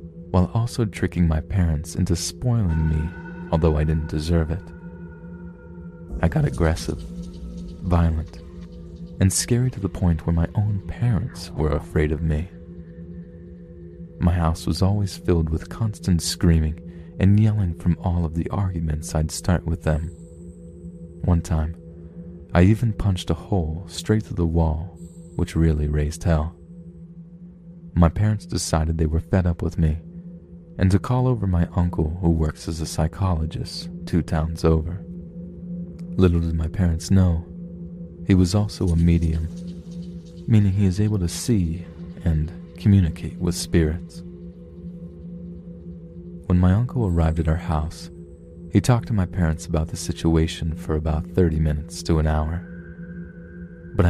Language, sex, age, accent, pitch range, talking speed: English, male, 30-49, American, 85-90 Hz, 145 wpm